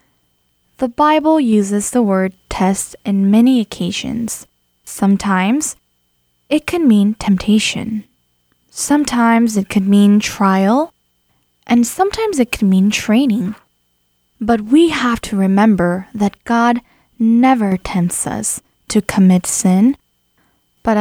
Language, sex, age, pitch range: Korean, female, 10-29, 190-245 Hz